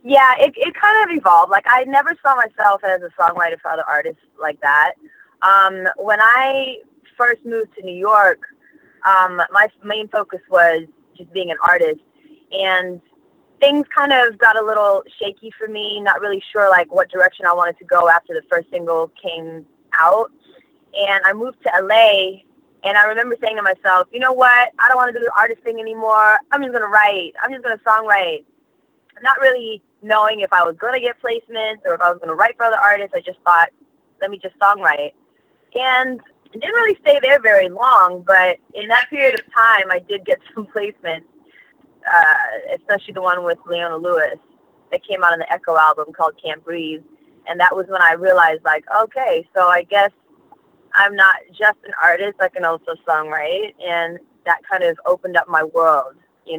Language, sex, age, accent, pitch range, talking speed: English, female, 20-39, American, 180-260 Hz, 200 wpm